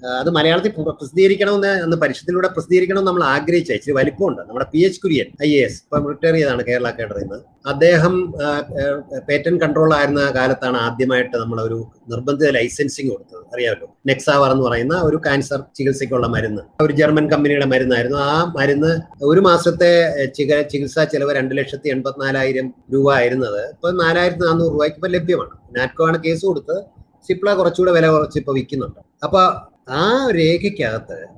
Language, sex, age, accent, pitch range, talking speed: Malayalam, male, 30-49, native, 130-165 Hz, 130 wpm